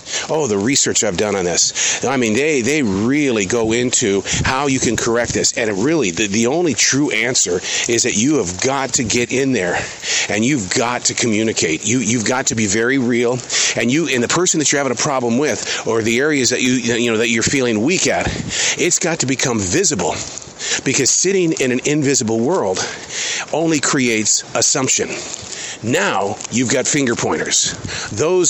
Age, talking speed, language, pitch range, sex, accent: 40-59, 190 wpm, English, 120-145 Hz, male, American